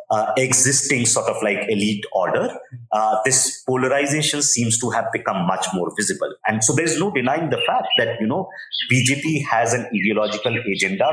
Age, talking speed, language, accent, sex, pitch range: 50-69, 175 wpm, English, Indian, male, 110-150 Hz